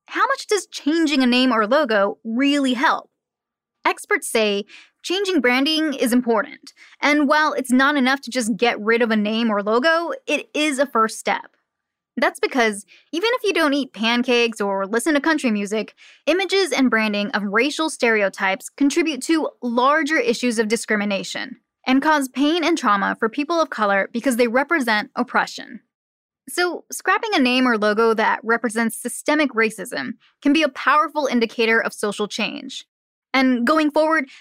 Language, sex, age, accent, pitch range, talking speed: English, female, 10-29, American, 225-305 Hz, 165 wpm